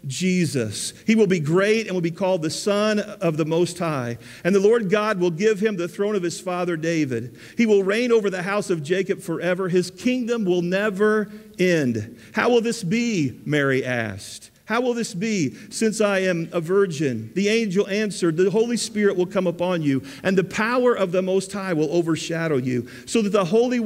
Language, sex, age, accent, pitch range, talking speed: English, male, 50-69, American, 170-210 Hz, 205 wpm